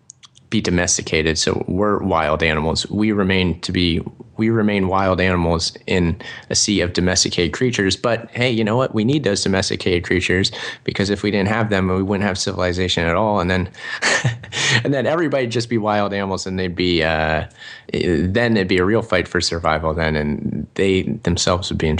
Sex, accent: male, American